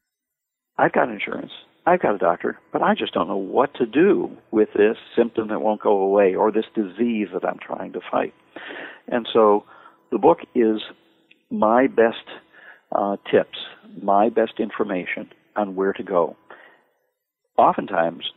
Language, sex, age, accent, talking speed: English, male, 50-69, American, 155 wpm